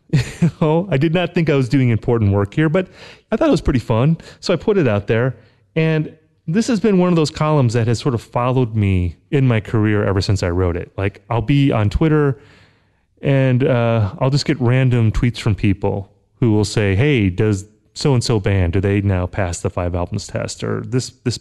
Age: 30-49